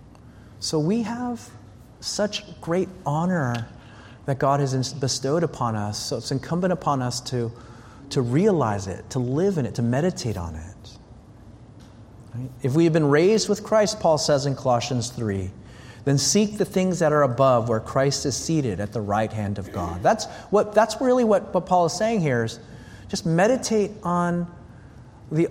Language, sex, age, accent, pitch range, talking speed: English, male, 30-49, American, 120-175 Hz, 170 wpm